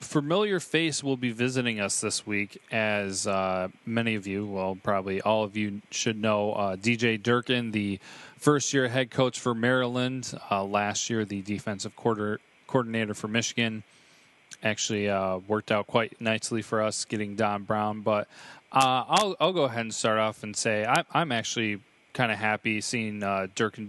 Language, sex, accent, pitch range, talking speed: English, male, American, 105-120 Hz, 175 wpm